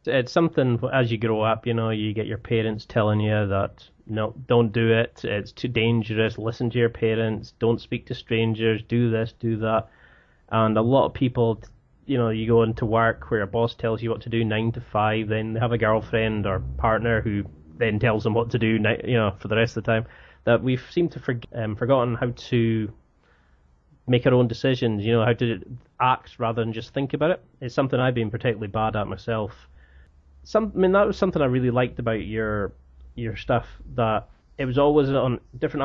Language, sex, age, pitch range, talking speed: English, male, 20-39, 110-125 Hz, 215 wpm